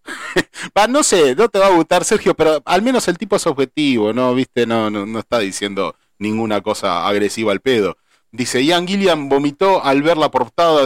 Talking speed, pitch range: 200 wpm, 120-165 Hz